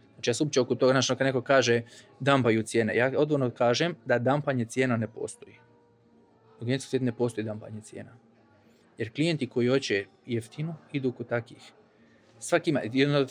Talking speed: 160 wpm